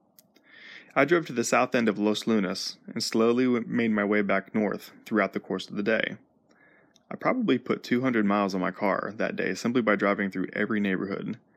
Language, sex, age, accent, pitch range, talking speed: English, male, 20-39, American, 100-125 Hz, 195 wpm